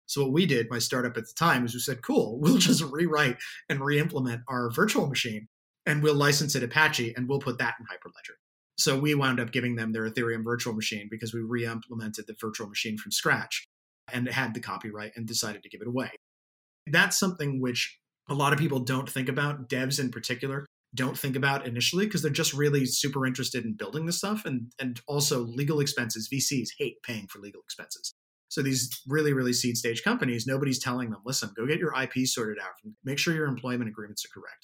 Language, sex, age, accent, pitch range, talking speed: English, male, 30-49, American, 115-145 Hz, 215 wpm